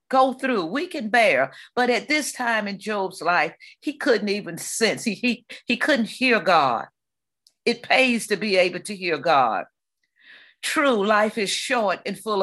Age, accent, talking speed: 50-69, American, 175 wpm